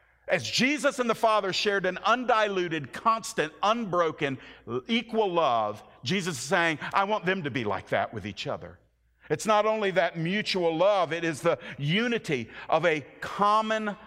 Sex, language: male, English